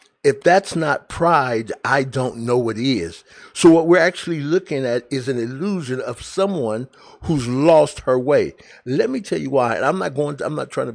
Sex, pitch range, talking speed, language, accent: male, 120-155 Hz, 210 wpm, English, American